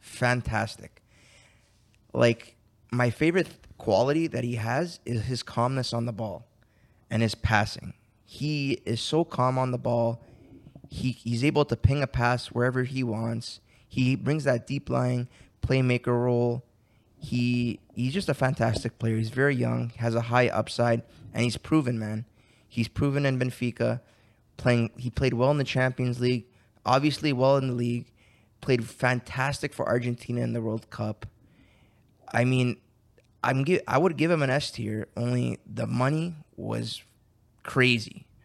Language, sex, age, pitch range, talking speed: English, male, 20-39, 115-130 Hz, 155 wpm